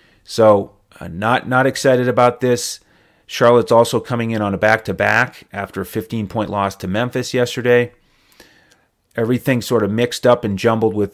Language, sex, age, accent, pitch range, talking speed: English, male, 30-49, American, 100-120 Hz, 155 wpm